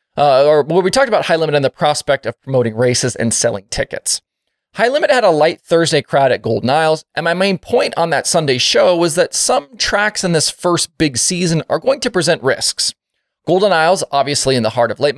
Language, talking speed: English, 225 wpm